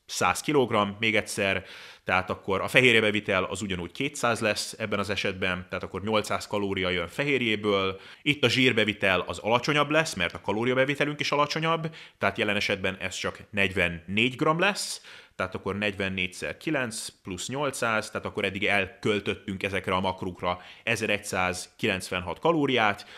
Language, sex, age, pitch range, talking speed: Hungarian, male, 30-49, 95-115 Hz, 140 wpm